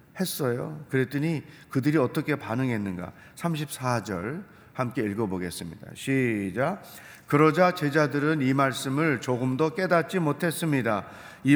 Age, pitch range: 40-59, 130-175 Hz